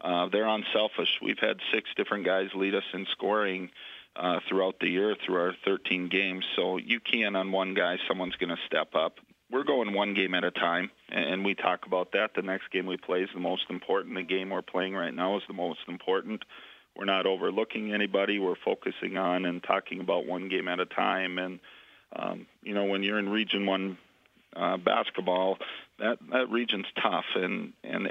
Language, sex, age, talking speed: English, male, 40-59, 205 wpm